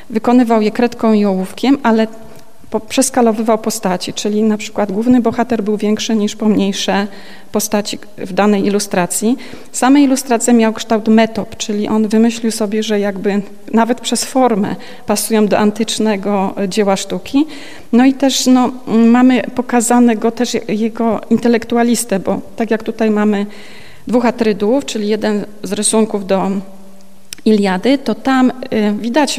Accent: native